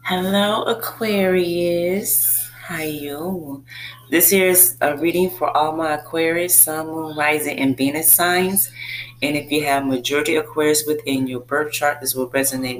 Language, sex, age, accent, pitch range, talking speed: English, female, 30-49, American, 130-160 Hz, 155 wpm